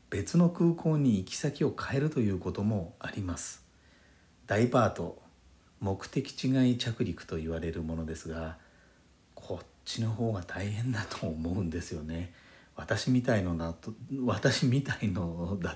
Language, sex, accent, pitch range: Japanese, male, native, 85-115 Hz